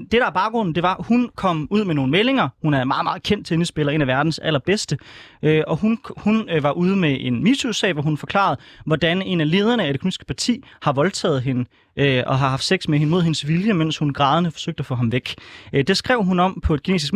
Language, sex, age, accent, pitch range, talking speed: Danish, male, 30-49, native, 145-200 Hz, 240 wpm